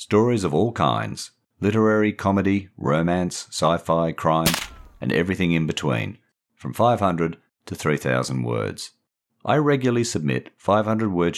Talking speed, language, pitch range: 115 wpm, English, 75-110 Hz